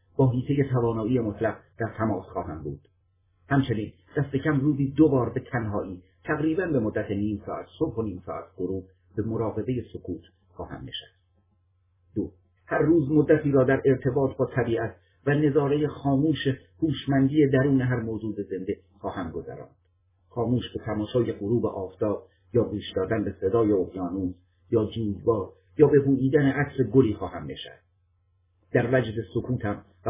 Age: 50-69